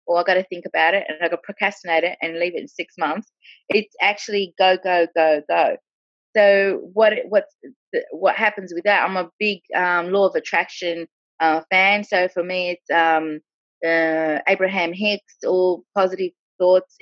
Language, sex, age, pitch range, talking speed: English, female, 20-39, 170-205 Hz, 180 wpm